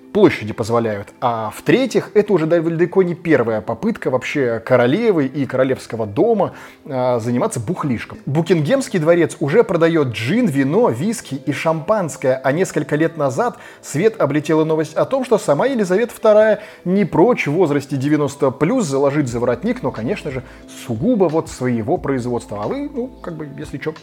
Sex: male